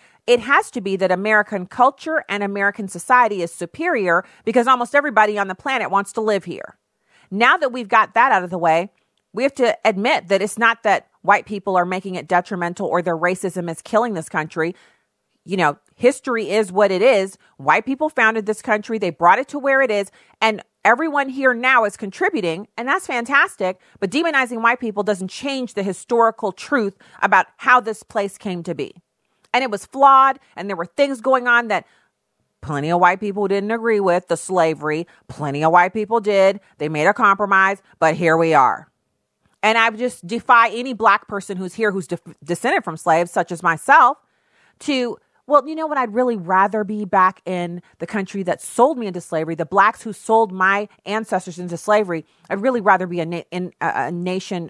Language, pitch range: English, 175-235 Hz